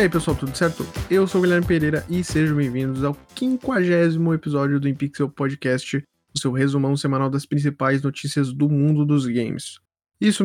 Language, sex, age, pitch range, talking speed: Portuguese, male, 20-39, 125-160 Hz, 180 wpm